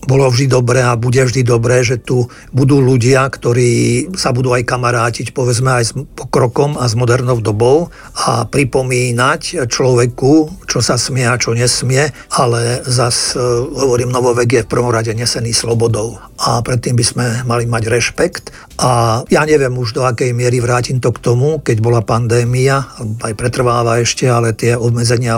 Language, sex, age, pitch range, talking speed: Slovak, male, 50-69, 115-130 Hz, 170 wpm